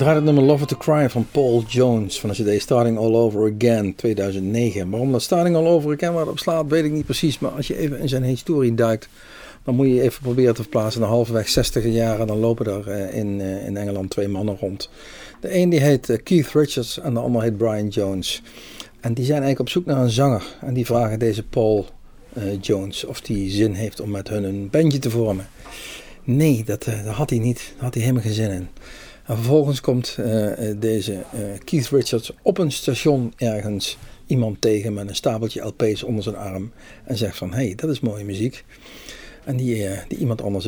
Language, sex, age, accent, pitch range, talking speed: Dutch, male, 50-69, Dutch, 100-130 Hz, 215 wpm